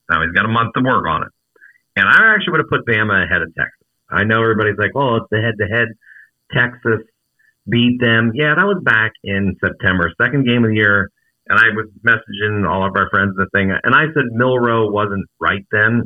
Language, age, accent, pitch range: English, 50-69, American, 95-120 Hz